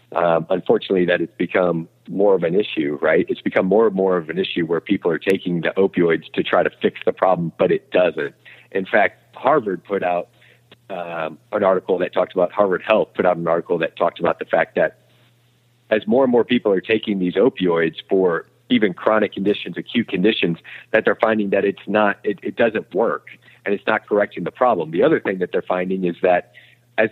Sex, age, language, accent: male, 50-69, English, American